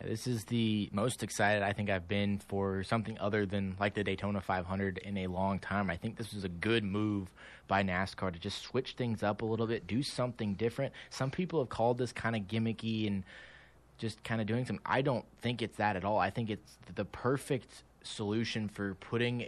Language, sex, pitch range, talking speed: English, male, 100-115 Hz, 215 wpm